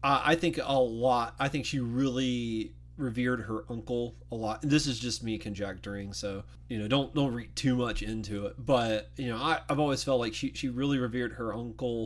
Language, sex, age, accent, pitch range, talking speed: English, male, 30-49, American, 110-130 Hz, 205 wpm